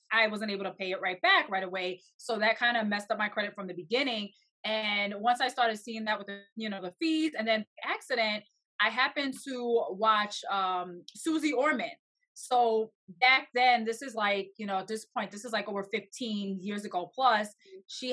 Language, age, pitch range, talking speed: English, 20-39, 210-285 Hz, 200 wpm